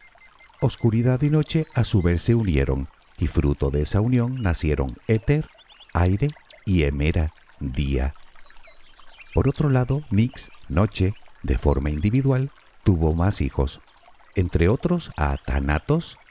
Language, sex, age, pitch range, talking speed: Spanish, male, 50-69, 75-120 Hz, 125 wpm